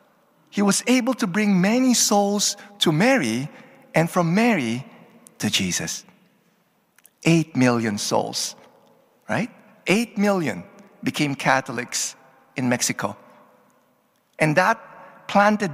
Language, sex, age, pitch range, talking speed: English, male, 50-69, 150-215 Hz, 105 wpm